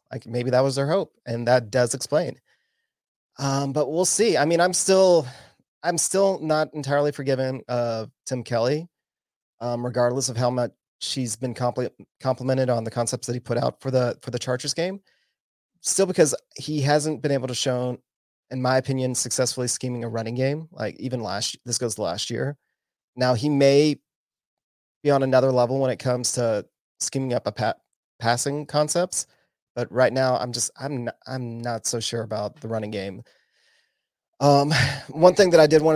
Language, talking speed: English, 180 wpm